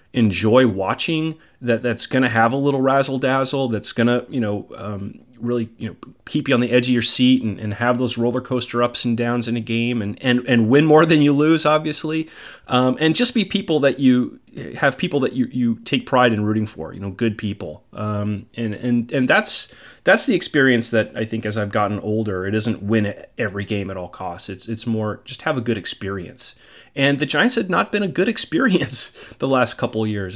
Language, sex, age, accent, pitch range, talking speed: English, male, 30-49, American, 110-140 Hz, 225 wpm